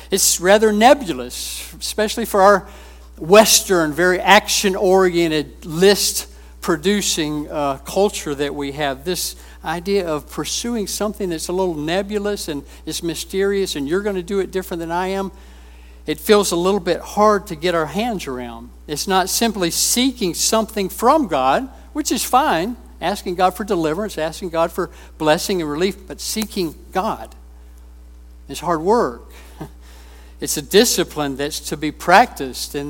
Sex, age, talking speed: male, 60-79, 150 wpm